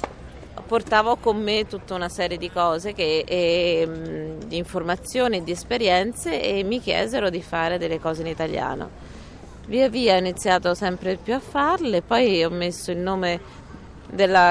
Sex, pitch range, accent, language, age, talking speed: female, 165-200 Hz, native, Italian, 30-49, 155 wpm